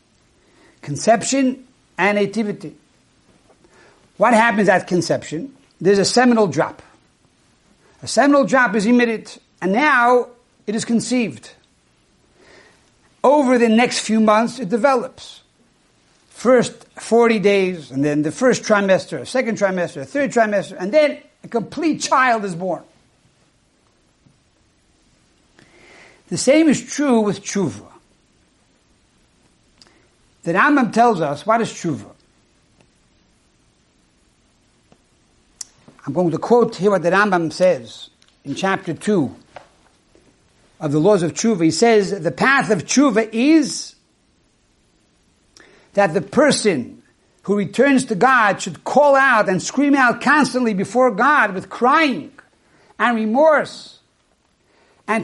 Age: 60-79